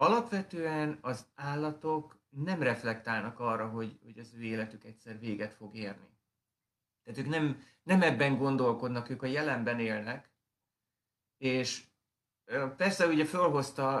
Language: Hungarian